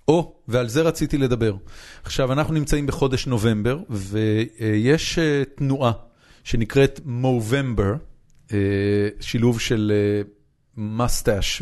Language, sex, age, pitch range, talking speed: Hebrew, male, 40-59, 110-140 Hz, 90 wpm